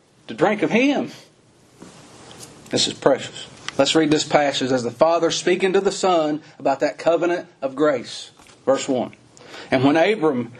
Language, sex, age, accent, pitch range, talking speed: English, male, 40-59, American, 140-175 Hz, 160 wpm